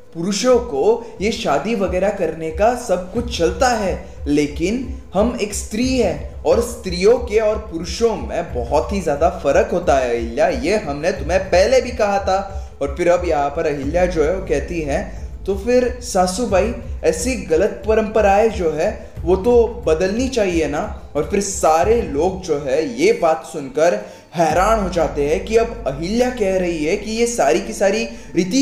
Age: 20-39